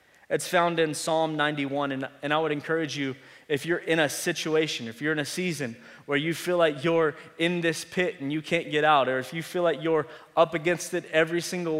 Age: 20-39